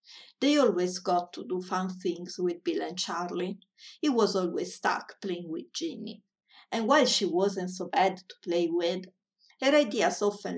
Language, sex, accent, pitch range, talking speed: English, female, Italian, 180-215 Hz, 170 wpm